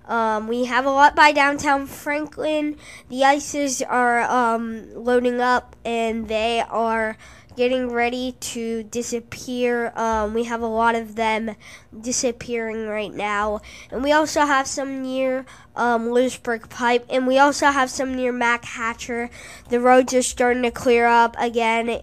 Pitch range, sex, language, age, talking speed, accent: 230-280 Hz, female, English, 10-29, 155 wpm, American